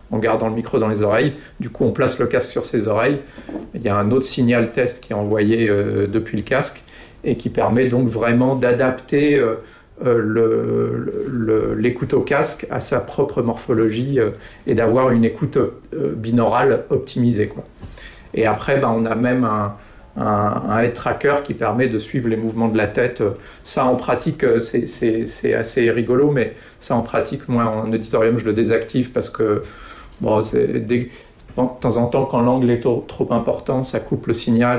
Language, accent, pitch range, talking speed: French, French, 115-130 Hz, 190 wpm